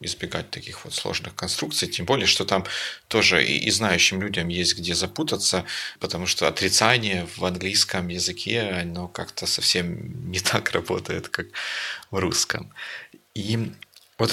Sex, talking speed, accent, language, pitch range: male, 140 wpm, native, Russian, 90-105 Hz